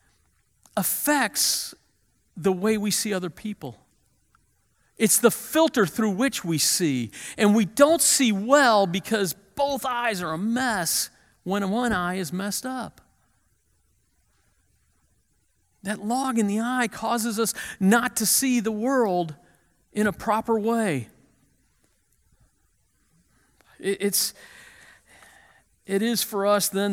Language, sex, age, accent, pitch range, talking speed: English, male, 50-69, American, 185-240 Hz, 120 wpm